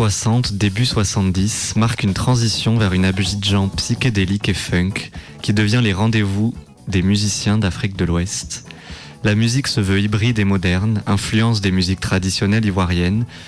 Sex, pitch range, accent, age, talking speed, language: male, 95-115 Hz, French, 20-39, 145 wpm, French